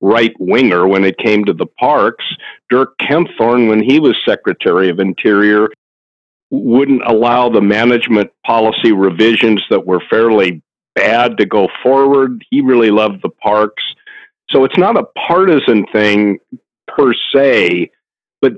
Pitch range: 100-125 Hz